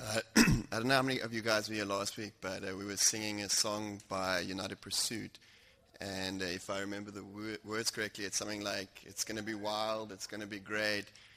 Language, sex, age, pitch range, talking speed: English, male, 20-39, 100-115 Hz, 230 wpm